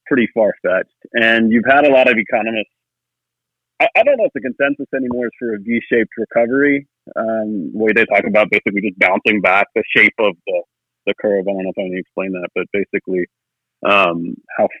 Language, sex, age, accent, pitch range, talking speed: English, male, 40-59, American, 100-125 Hz, 205 wpm